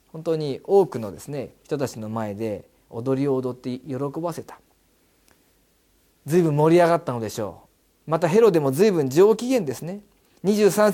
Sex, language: male, Japanese